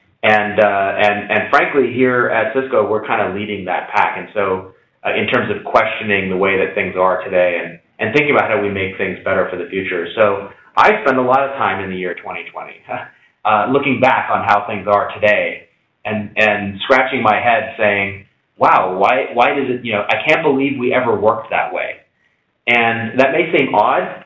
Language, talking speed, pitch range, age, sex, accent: English, 215 wpm, 100-125 Hz, 30-49, male, American